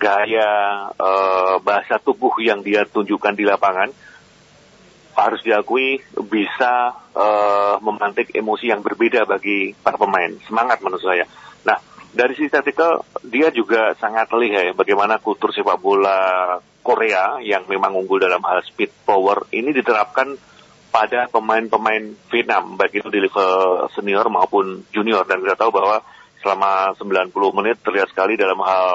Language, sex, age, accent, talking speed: Indonesian, male, 40-59, native, 140 wpm